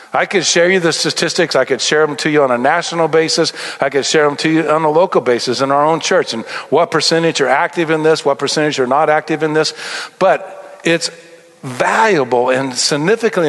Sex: male